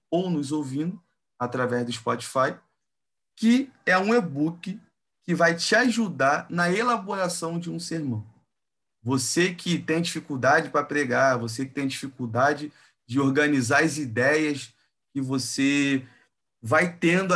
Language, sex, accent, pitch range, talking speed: Portuguese, male, Brazilian, 130-170 Hz, 130 wpm